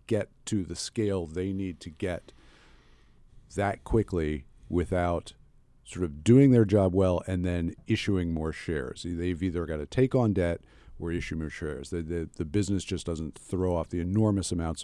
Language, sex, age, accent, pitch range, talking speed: English, male, 50-69, American, 80-95 Hz, 180 wpm